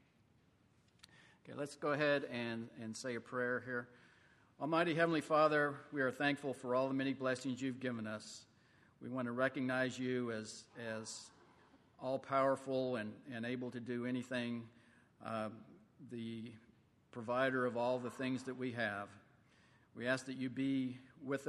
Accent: American